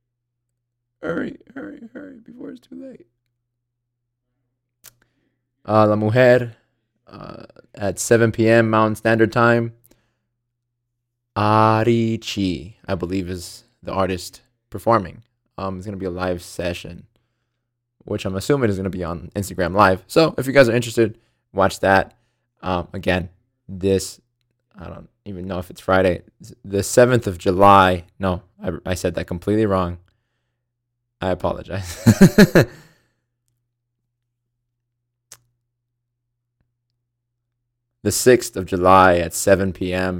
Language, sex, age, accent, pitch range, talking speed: English, male, 20-39, American, 95-120 Hz, 120 wpm